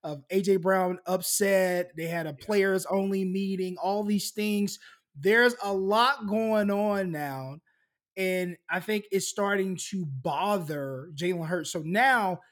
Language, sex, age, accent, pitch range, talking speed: English, male, 20-39, American, 165-200 Hz, 145 wpm